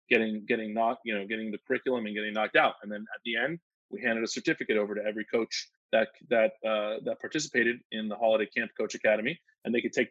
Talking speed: 235 wpm